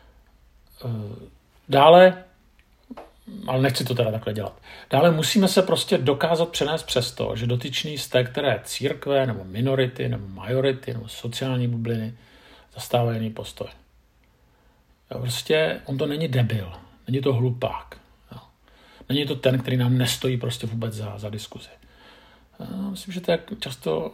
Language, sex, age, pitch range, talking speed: Czech, male, 50-69, 115-135 Hz, 135 wpm